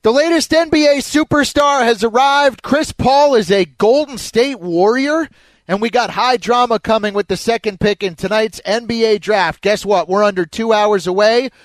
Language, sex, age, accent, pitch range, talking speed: English, male, 30-49, American, 160-210 Hz, 175 wpm